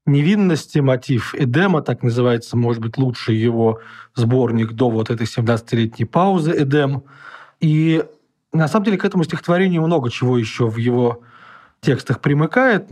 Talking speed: 140 wpm